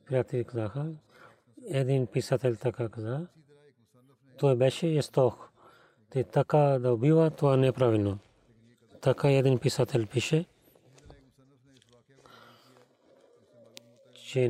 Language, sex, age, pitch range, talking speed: Bulgarian, male, 40-59, 120-140 Hz, 85 wpm